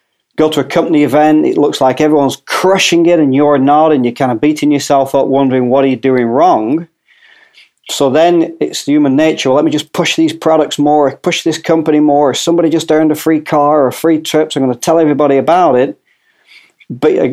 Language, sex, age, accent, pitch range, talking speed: English, male, 40-59, British, 130-165 Hz, 210 wpm